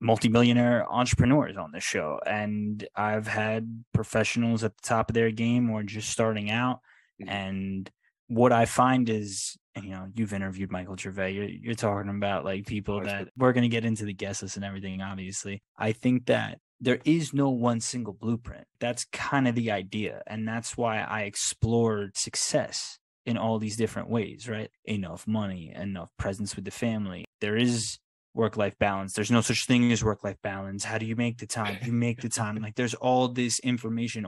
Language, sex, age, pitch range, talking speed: English, male, 20-39, 100-115 Hz, 185 wpm